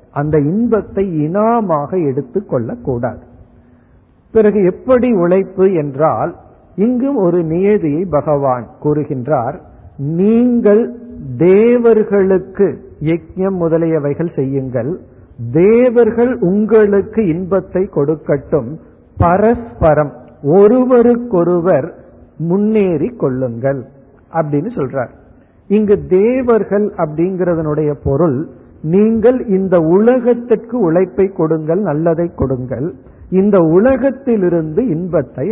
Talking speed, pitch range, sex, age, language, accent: 75 wpm, 145-205 Hz, male, 50-69, Tamil, native